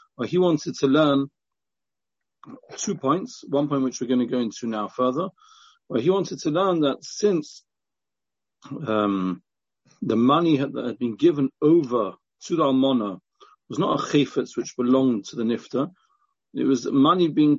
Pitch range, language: 130-180 Hz, English